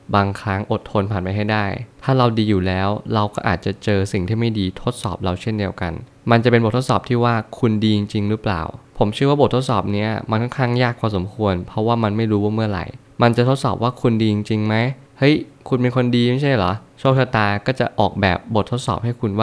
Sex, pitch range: male, 100-125 Hz